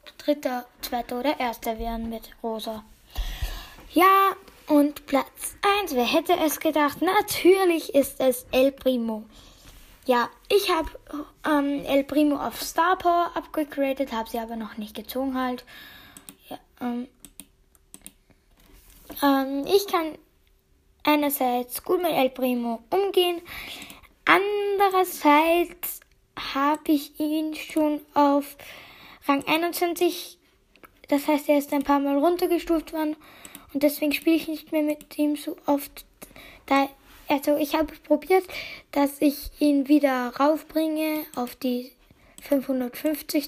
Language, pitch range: German, 265-320 Hz